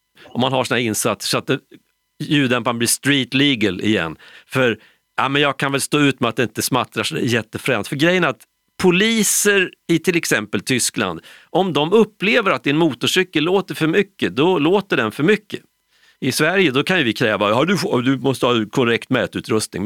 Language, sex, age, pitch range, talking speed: Swedish, male, 40-59, 115-165 Hz, 190 wpm